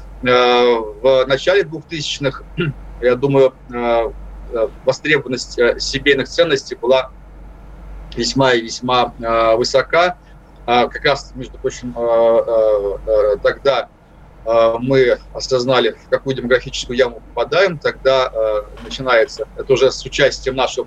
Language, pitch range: Russian, 120-155 Hz